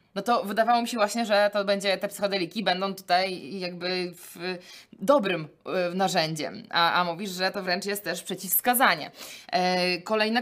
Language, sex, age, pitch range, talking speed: Polish, female, 20-39, 185-230 Hz, 150 wpm